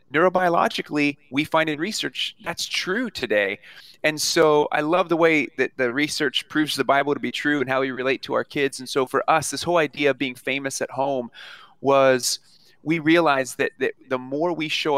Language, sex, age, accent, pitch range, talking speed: English, male, 30-49, American, 125-150 Hz, 205 wpm